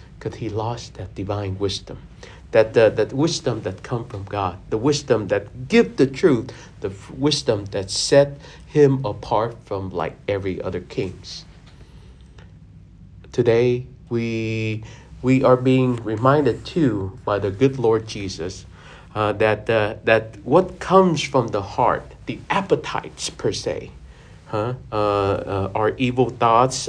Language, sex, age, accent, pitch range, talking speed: English, male, 50-69, American, 105-130 Hz, 140 wpm